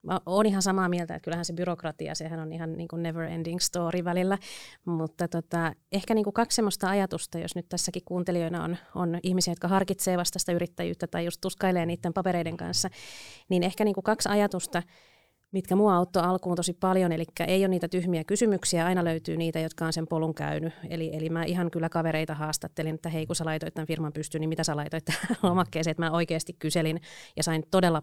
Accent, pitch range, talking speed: native, 165-185 Hz, 205 wpm